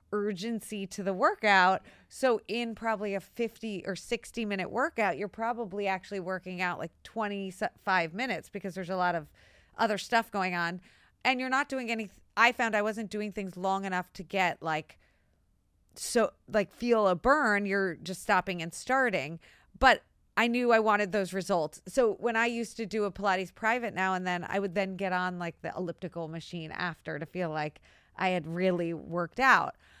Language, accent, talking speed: English, American, 185 wpm